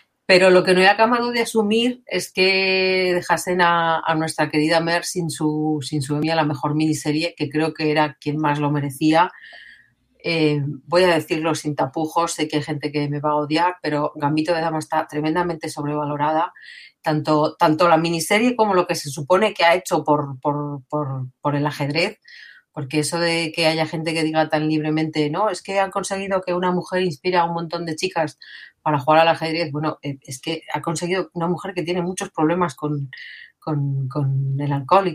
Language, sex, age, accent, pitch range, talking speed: Spanish, female, 40-59, Spanish, 150-180 Hz, 200 wpm